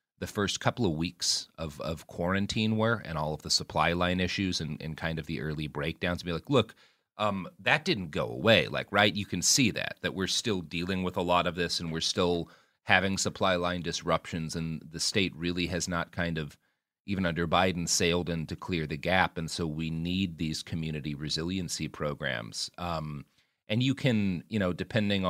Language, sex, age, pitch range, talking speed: English, male, 30-49, 80-95 Hz, 200 wpm